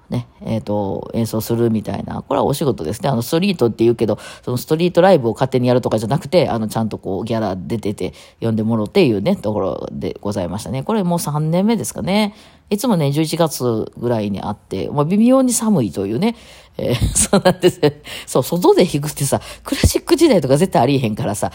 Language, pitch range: Japanese, 110-165 Hz